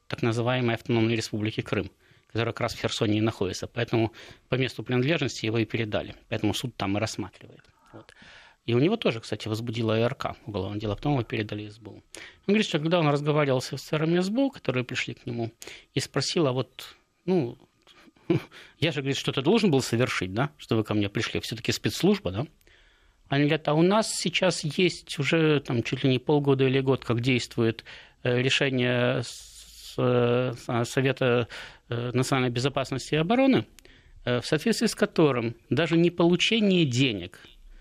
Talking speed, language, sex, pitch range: 165 wpm, Russian, male, 115-155 Hz